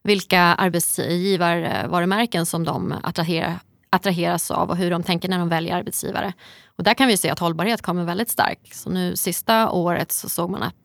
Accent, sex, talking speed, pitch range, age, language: native, female, 185 wpm, 175-205 Hz, 20-39, Swedish